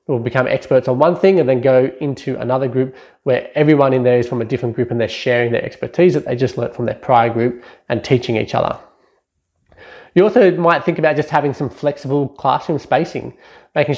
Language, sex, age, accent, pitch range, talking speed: English, male, 20-39, Australian, 125-150 Hz, 215 wpm